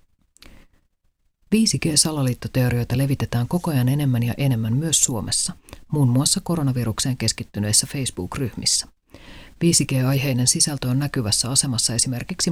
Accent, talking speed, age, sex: native, 95 wpm, 40-59, female